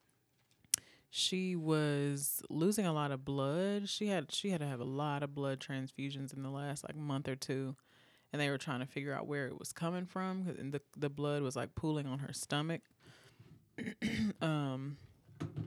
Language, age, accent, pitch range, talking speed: English, 20-39, American, 135-150 Hz, 185 wpm